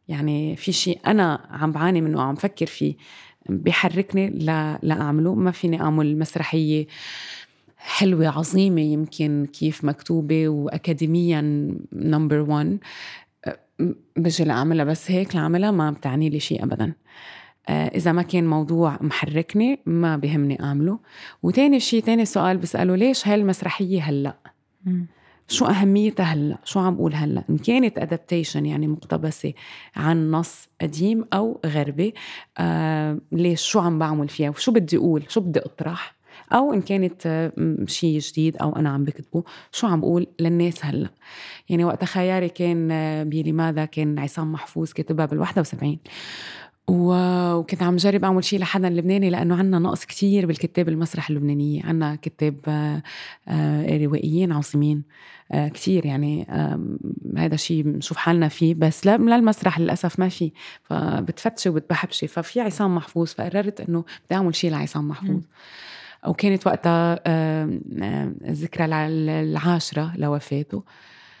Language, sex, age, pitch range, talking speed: Arabic, female, 30-49, 150-185 Hz, 130 wpm